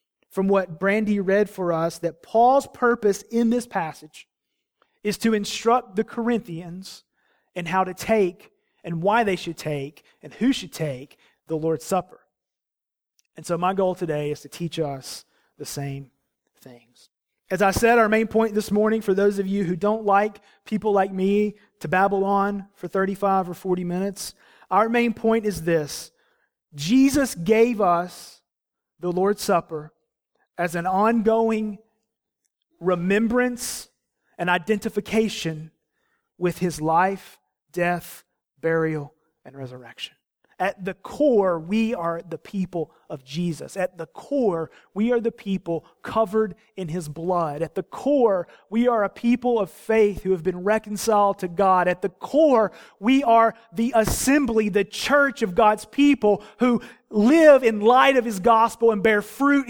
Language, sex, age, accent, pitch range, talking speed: English, male, 30-49, American, 175-225 Hz, 155 wpm